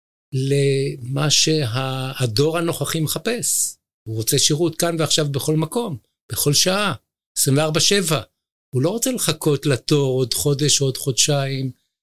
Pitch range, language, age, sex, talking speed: 120-155 Hz, Hebrew, 60-79, male, 120 wpm